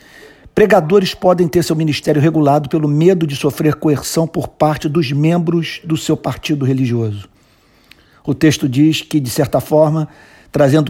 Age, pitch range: 50-69, 140-165 Hz